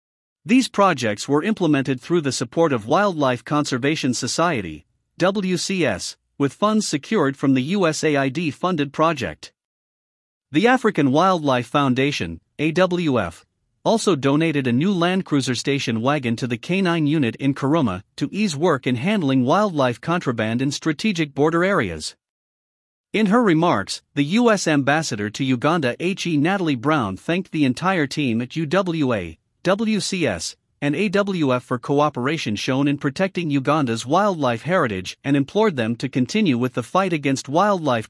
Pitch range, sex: 130-175 Hz, male